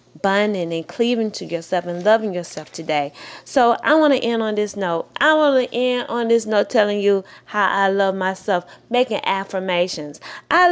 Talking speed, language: 185 wpm, English